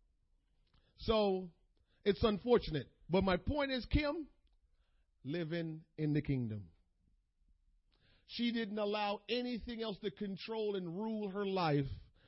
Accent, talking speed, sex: American, 110 wpm, male